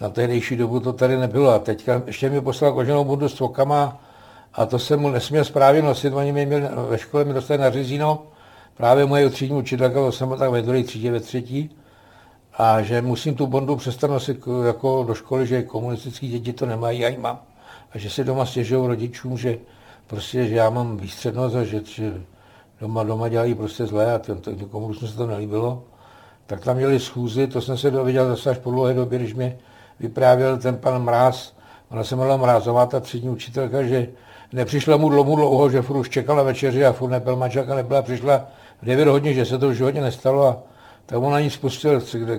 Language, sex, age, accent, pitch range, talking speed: Czech, male, 60-79, native, 120-140 Hz, 200 wpm